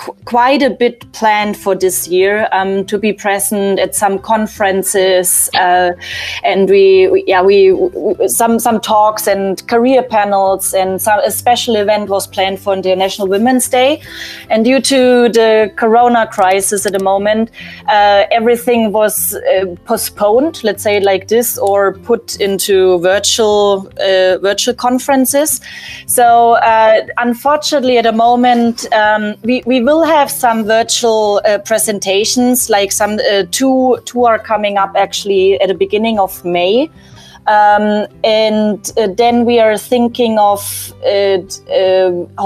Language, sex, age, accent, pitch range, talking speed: English, female, 20-39, German, 195-235 Hz, 145 wpm